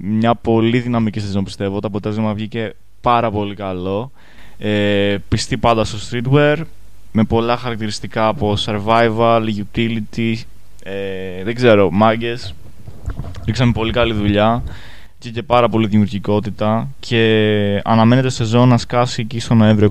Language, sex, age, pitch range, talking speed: Greek, male, 20-39, 105-125 Hz, 120 wpm